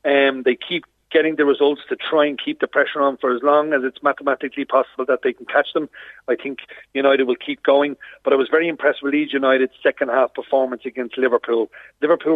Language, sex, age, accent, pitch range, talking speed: English, male, 40-59, Irish, 135-155 Hz, 215 wpm